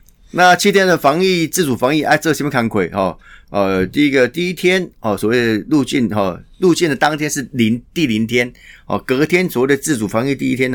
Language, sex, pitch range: Chinese, male, 105-145 Hz